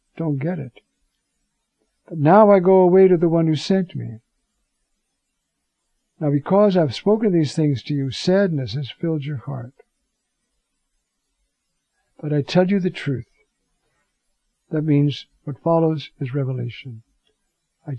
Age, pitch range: 60-79, 135-165 Hz